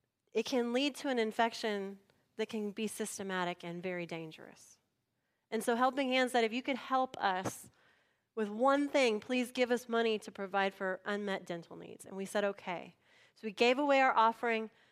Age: 30-49